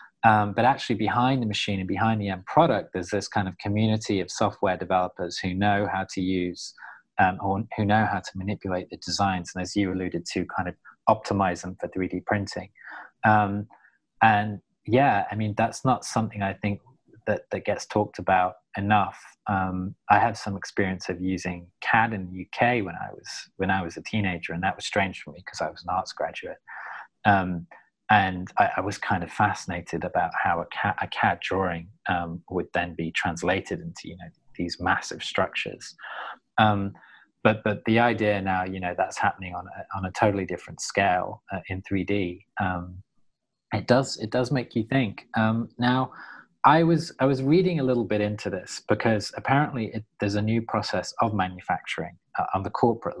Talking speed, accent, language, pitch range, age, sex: 195 wpm, British, English, 95-110 Hz, 20-39, male